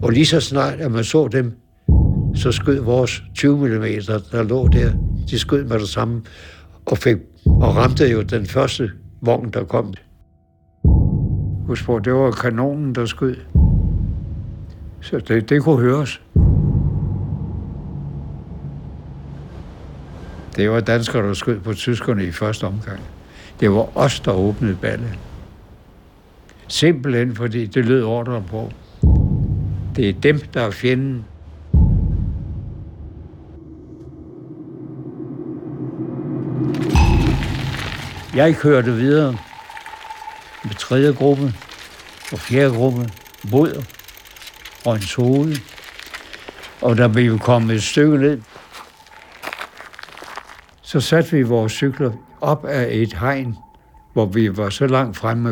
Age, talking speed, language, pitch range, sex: 60-79, 115 wpm, Danish, 95-130 Hz, male